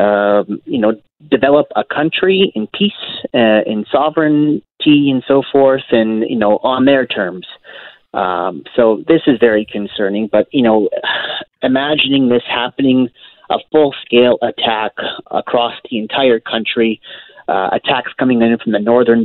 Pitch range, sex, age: 110-130 Hz, male, 30-49